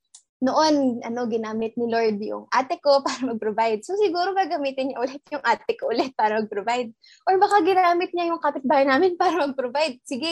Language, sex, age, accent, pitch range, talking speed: English, female, 20-39, Filipino, 235-285 Hz, 170 wpm